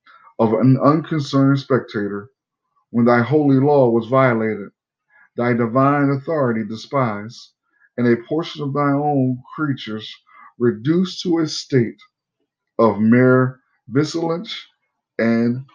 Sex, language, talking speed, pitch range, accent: male, English, 110 wpm, 110-140 Hz, American